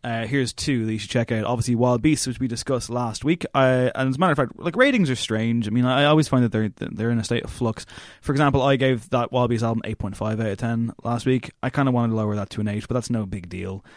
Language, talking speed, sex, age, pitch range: English, 295 wpm, male, 20-39, 115-135 Hz